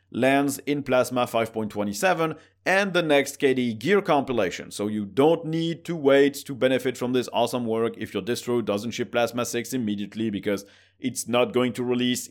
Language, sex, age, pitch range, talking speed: English, male, 30-49, 115-155 Hz, 175 wpm